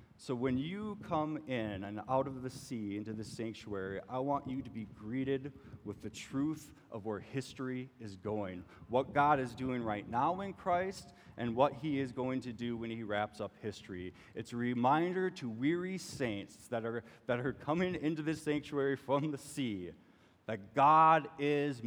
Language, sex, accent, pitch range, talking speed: English, male, American, 115-145 Hz, 185 wpm